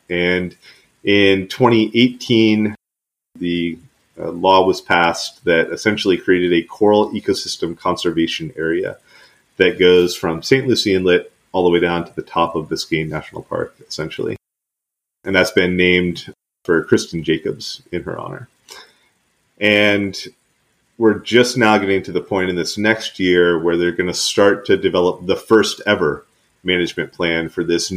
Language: English